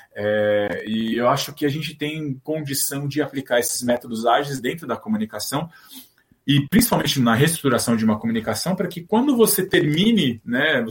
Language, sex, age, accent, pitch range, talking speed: Portuguese, male, 20-39, Brazilian, 120-185 Hz, 165 wpm